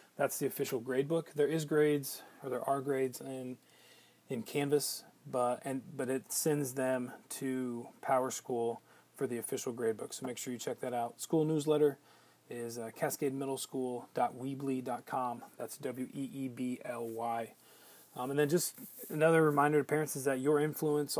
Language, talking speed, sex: English, 155 wpm, male